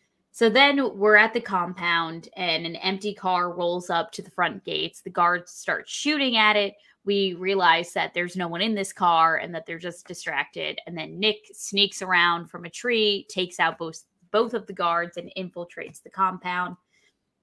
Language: English